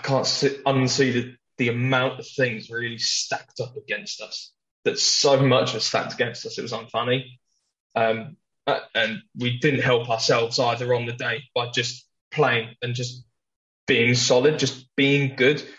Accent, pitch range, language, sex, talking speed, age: British, 120-135 Hz, English, male, 165 wpm, 10-29